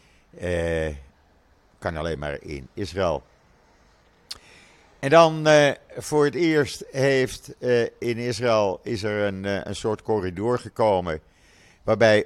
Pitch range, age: 85-115 Hz, 50-69